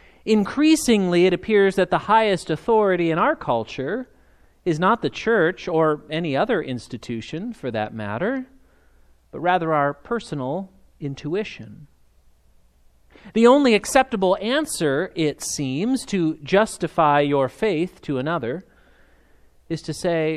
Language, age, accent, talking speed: English, 40-59, American, 120 wpm